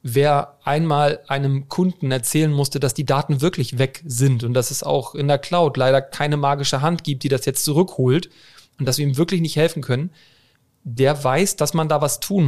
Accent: German